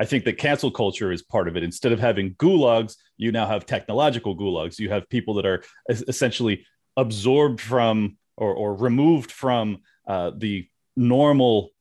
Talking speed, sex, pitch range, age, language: 170 wpm, male, 100-125 Hz, 30-49, English